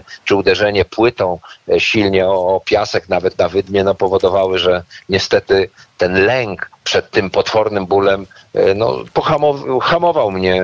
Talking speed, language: 135 wpm, Polish